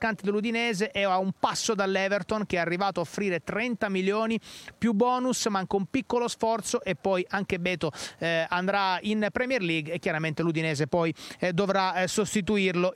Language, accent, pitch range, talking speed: Italian, native, 185-235 Hz, 170 wpm